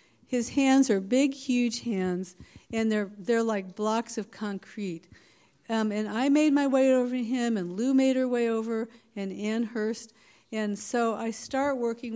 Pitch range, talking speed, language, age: 215-265 Hz, 175 wpm, English, 50-69